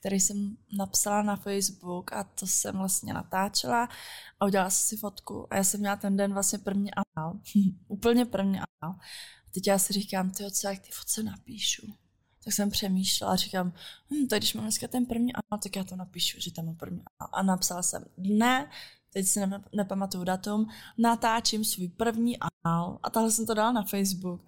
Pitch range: 185-205 Hz